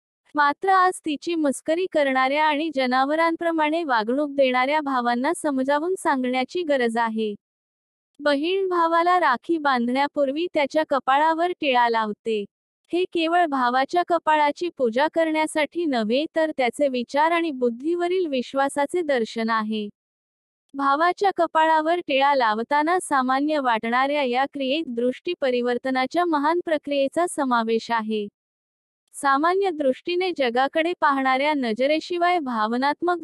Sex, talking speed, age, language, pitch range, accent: female, 90 wpm, 20-39, Hindi, 255-325 Hz, native